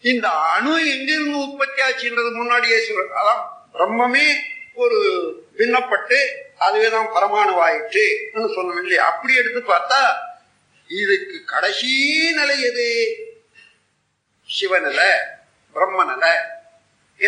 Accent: native